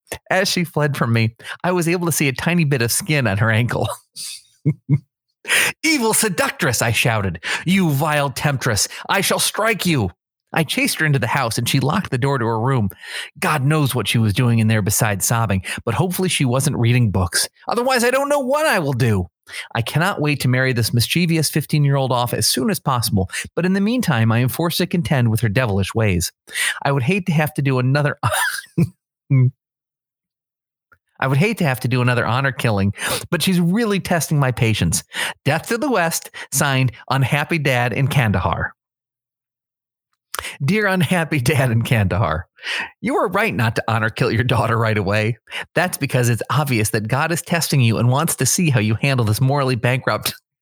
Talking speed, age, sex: 190 wpm, 30-49, male